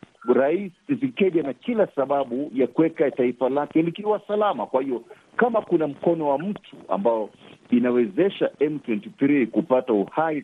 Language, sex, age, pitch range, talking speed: Swahili, male, 50-69, 120-165 Hz, 140 wpm